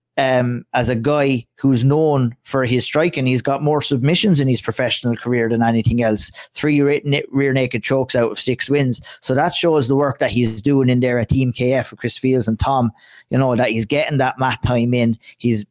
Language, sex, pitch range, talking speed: English, male, 120-150 Hz, 215 wpm